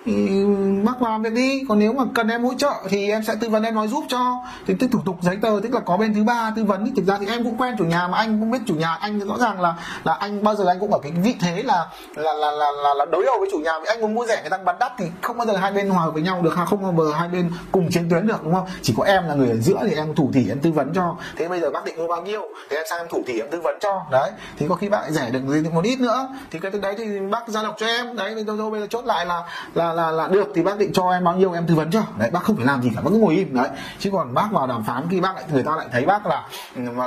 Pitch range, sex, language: 160-215 Hz, male, Vietnamese